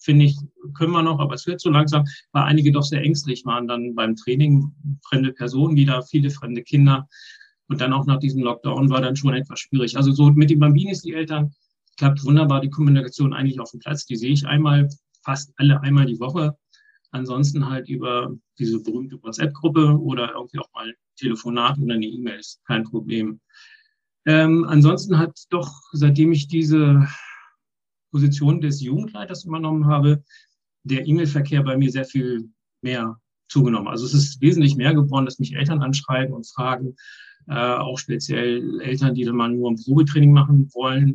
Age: 40-59